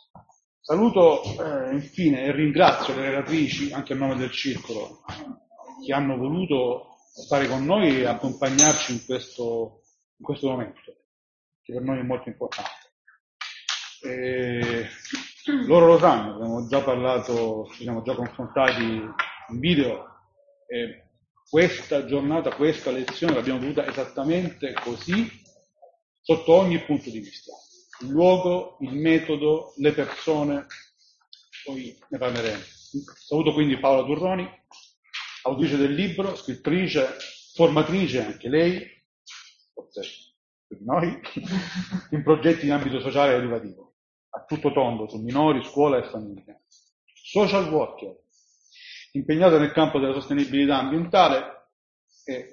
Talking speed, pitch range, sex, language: 120 wpm, 125-170 Hz, male, Italian